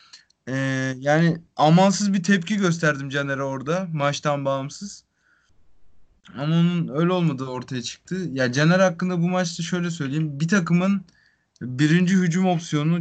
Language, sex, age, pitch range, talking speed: Turkish, male, 30-49, 145-175 Hz, 130 wpm